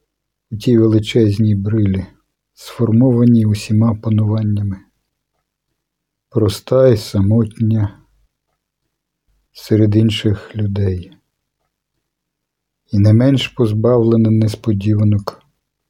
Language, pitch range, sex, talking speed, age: Ukrainian, 105-120 Hz, male, 70 wpm, 50-69